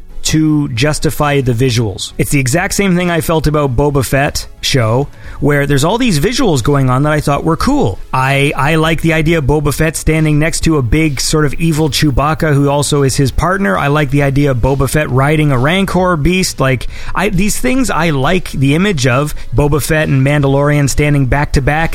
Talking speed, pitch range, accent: 210 wpm, 135-165 Hz, American